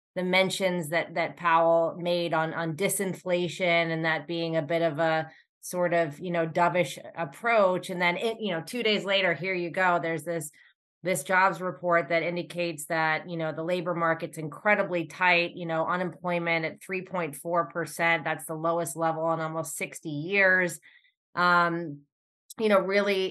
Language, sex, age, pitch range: English, female, 20-39, 165-185 Hz